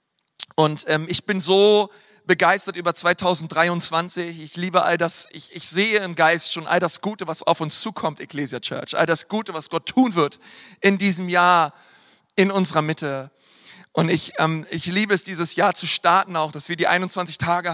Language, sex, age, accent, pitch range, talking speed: German, male, 40-59, German, 170-195 Hz, 190 wpm